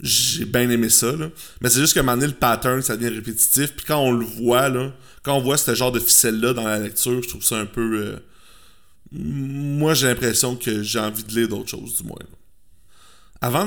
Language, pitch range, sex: French, 115-145 Hz, male